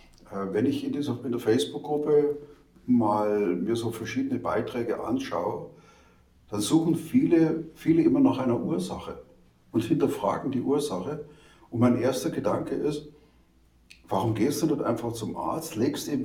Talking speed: 145 wpm